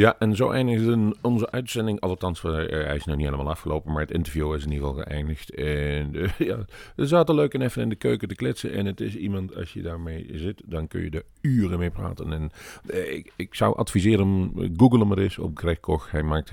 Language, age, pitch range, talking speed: Dutch, 40-59, 80-105 Hz, 230 wpm